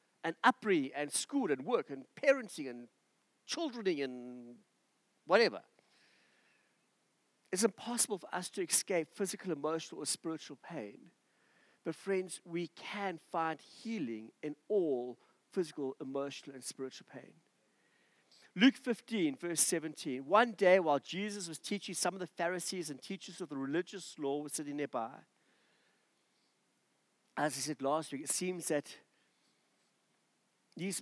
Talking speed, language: 130 wpm, English